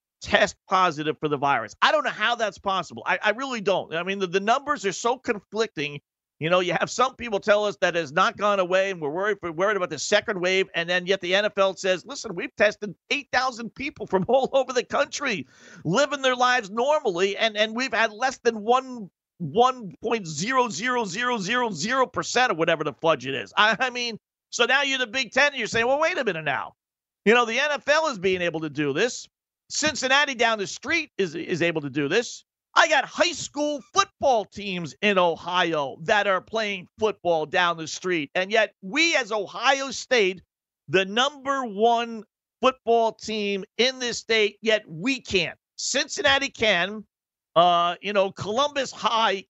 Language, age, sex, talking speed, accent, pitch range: English, 50-69, male, 200 wpm, American, 185-250 Hz